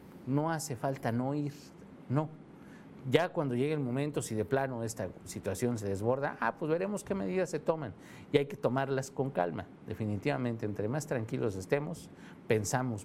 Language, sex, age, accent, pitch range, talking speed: Spanish, male, 50-69, Mexican, 105-140 Hz, 170 wpm